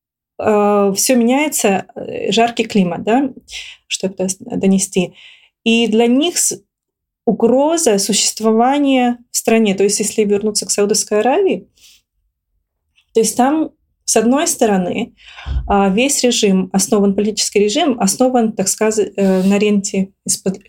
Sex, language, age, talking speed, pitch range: female, Russian, 20-39, 110 wpm, 190-230 Hz